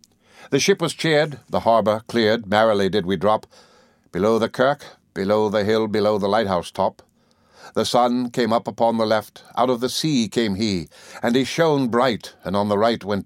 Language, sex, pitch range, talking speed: English, male, 100-125 Hz, 190 wpm